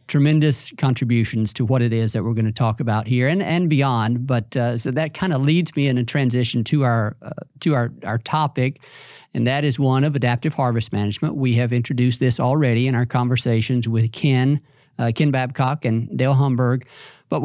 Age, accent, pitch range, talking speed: 50-69, American, 125-150 Hz, 205 wpm